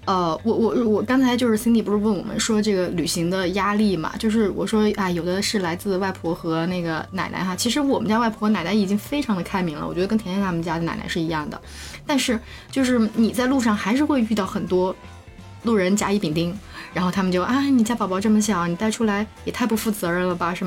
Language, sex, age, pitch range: Chinese, female, 20-39, 180-225 Hz